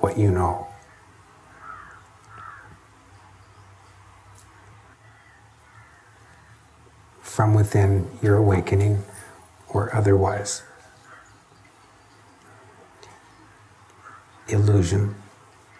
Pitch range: 95-110 Hz